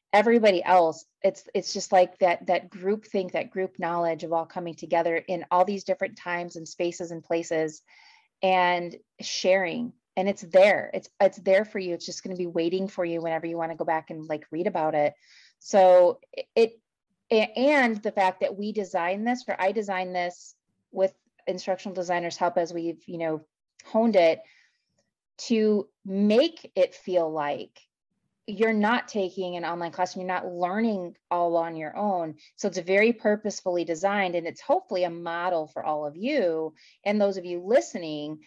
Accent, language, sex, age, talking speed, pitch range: American, English, female, 30-49, 180 wpm, 175-220 Hz